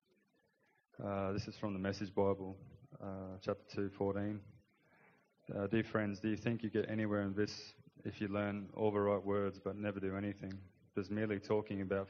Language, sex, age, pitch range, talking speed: English, male, 20-39, 100-105 Hz, 185 wpm